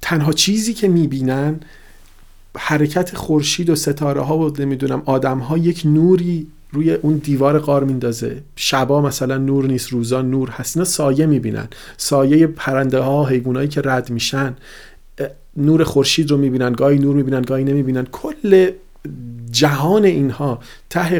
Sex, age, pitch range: male, 40-59, 130-165 Hz